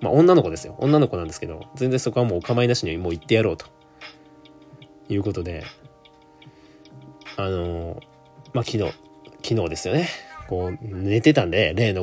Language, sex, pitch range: Japanese, male, 95-150 Hz